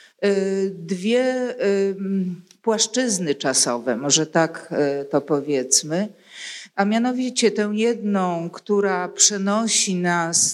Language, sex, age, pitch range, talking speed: Polish, female, 50-69, 180-215 Hz, 80 wpm